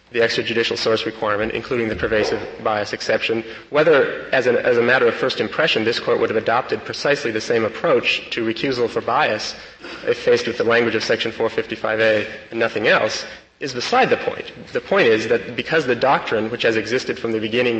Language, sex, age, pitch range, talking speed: English, male, 30-49, 110-170 Hz, 200 wpm